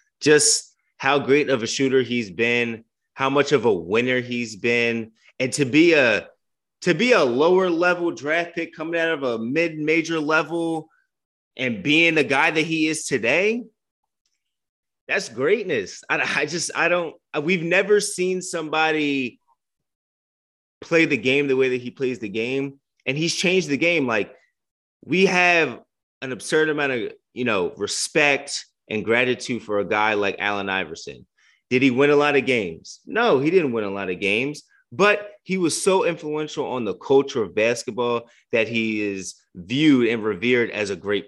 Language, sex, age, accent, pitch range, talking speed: English, male, 30-49, American, 135-215 Hz, 175 wpm